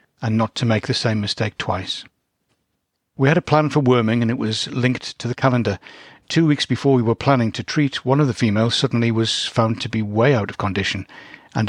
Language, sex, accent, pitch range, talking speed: English, male, British, 110-135 Hz, 220 wpm